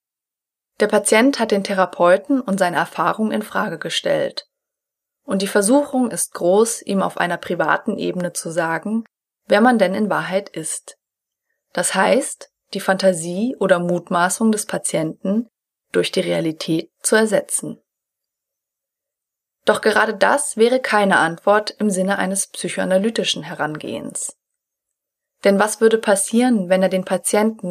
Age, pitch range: 20-39, 180-220 Hz